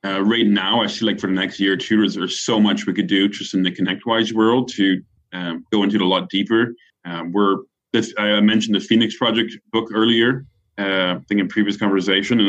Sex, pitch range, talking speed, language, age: male, 95-110 Hz, 225 wpm, English, 30-49